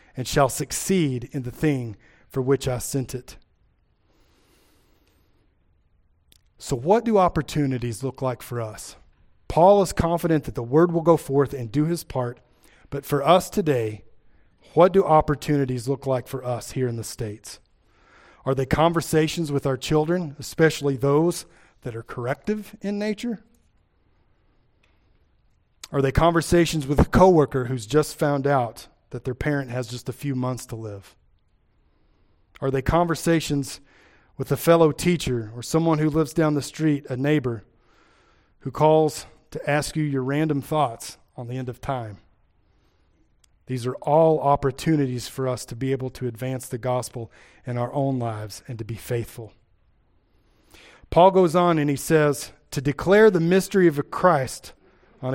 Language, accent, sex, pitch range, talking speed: English, American, male, 115-155 Hz, 155 wpm